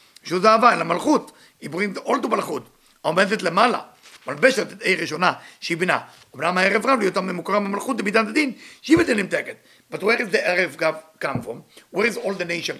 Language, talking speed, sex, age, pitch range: English, 60 wpm, male, 50-69, 180-225 Hz